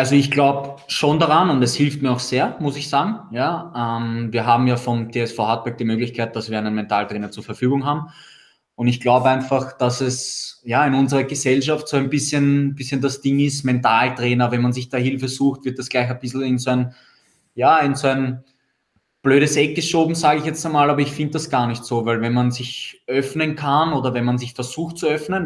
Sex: male